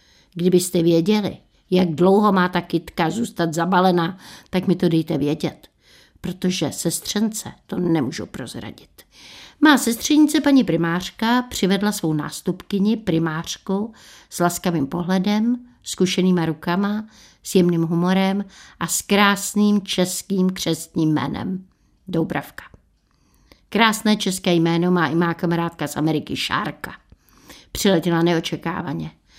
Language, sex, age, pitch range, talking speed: Czech, female, 60-79, 165-205 Hz, 110 wpm